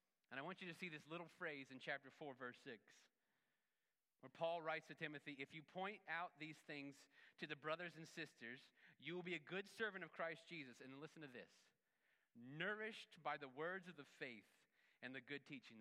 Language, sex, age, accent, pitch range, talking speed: English, male, 30-49, American, 125-165 Hz, 205 wpm